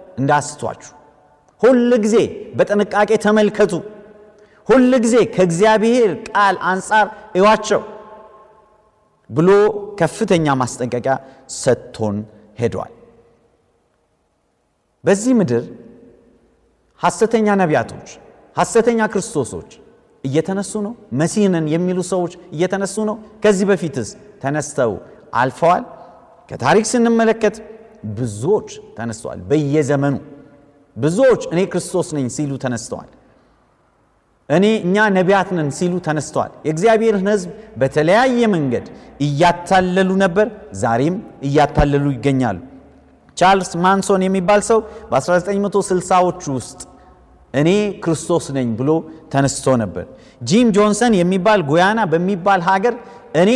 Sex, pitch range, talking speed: male, 145-215 Hz, 75 wpm